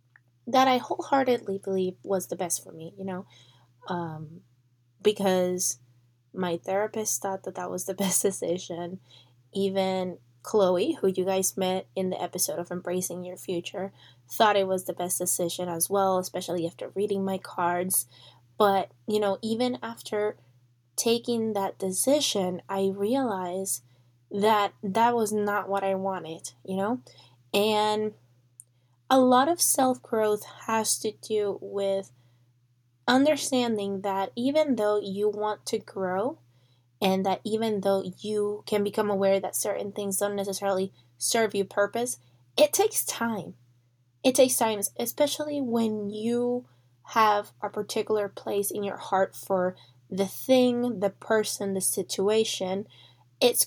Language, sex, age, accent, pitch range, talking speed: English, female, 10-29, American, 175-215 Hz, 140 wpm